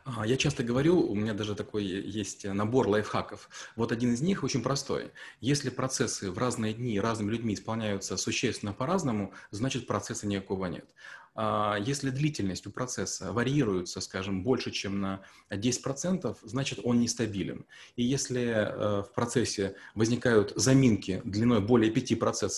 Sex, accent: male, native